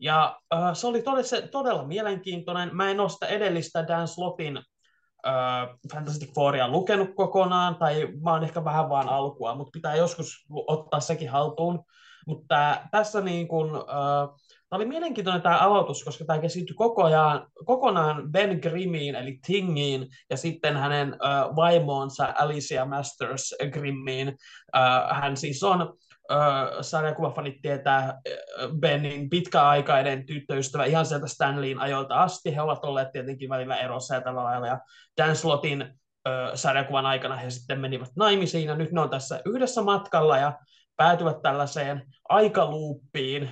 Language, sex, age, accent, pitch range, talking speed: Finnish, male, 20-39, native, 140-170 Hz, 145 wpm